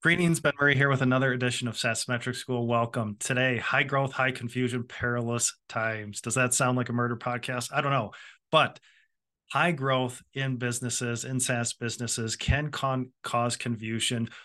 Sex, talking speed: male, 170 wpm